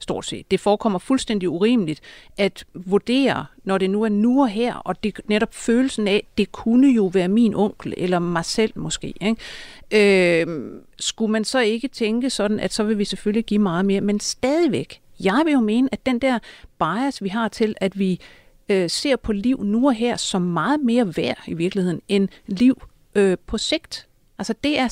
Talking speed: 195 wpm